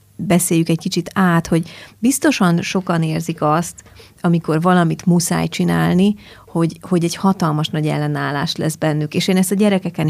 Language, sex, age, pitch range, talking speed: Hungarian, female, 30-49, 160-195 Hz, 155 wpm